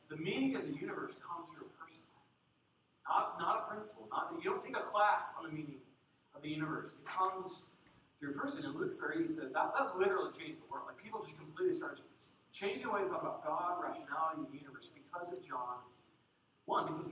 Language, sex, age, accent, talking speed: English, male, 30-49, American, 210 wpm